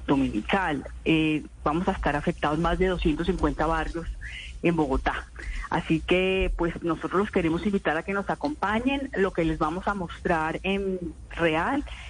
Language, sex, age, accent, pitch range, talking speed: Spanish, female, 40-59, Colombian, 165-210 Hz, 155 wpm